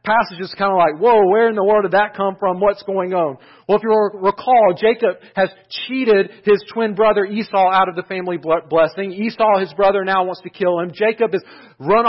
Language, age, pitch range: English, 40-59, 145-205 Hz